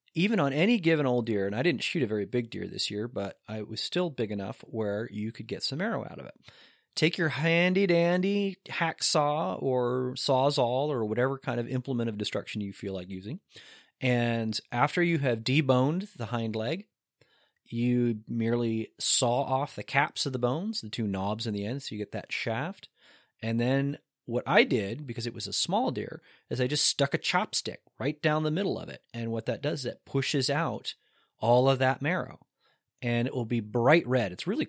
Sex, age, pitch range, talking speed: male, 30-49, 115-150 Hz, 205 wpm